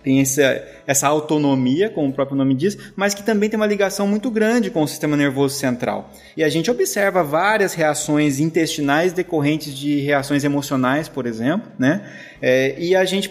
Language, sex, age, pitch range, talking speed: Portuguese, male, 20-39, 145-190 Hz, 170 wpm